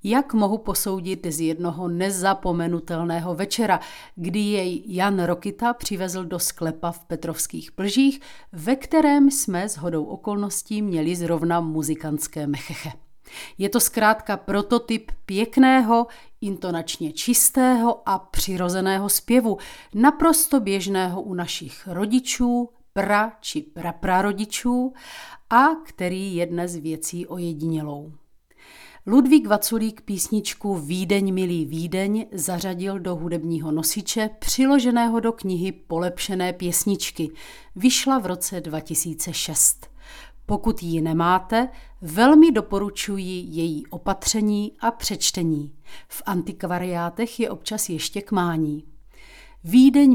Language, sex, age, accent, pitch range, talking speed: Czech, female, 40-59, native, 170-225 Hz, 105 wpm